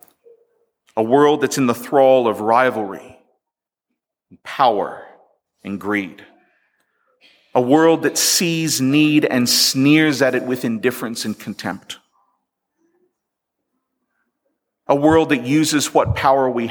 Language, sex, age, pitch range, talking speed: English, male, 40-59, 110-175 Hz, 110 wpm